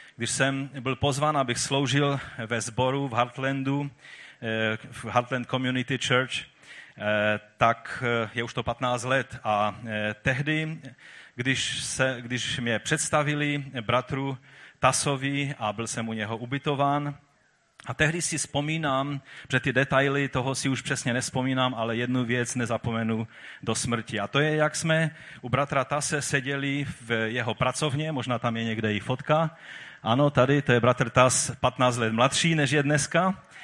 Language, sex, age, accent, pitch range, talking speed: Czech, male, 30-49, native, 120-145 Hz, 145 wpm